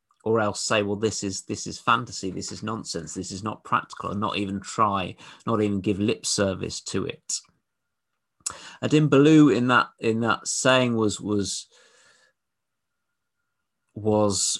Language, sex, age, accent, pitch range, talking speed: English, male, 30-49, British, 100-125 Hz, 150 wpm